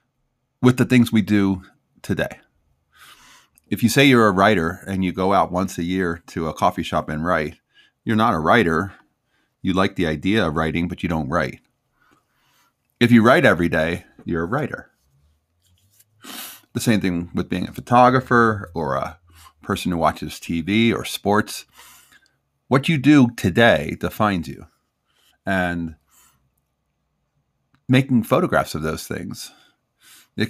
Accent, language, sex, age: American, English, male, 30-49